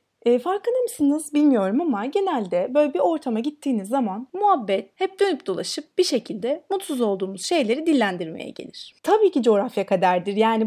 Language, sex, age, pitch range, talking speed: Turkish, female, 30-49, 215-310 Hz, 150 wpm